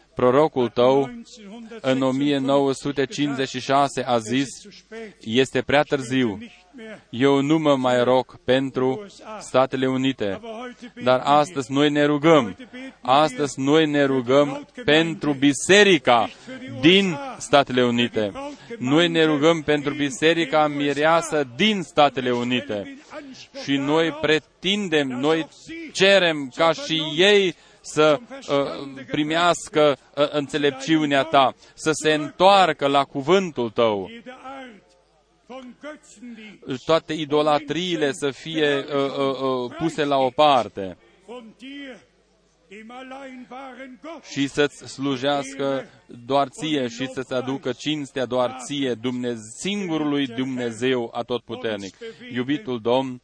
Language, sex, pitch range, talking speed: Romanian, male, 130-185 Hz, 95 wpm